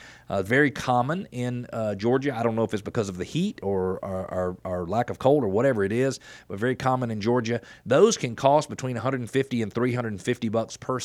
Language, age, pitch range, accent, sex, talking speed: English, 40-59, 105-125 Hz, American, male, 215 wpm